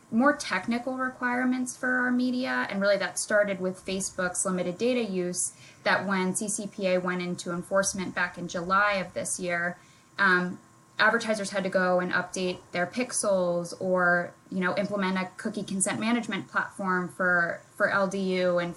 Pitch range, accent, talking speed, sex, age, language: 180-210 Hz, American, 155 wpm, female, 10-29, English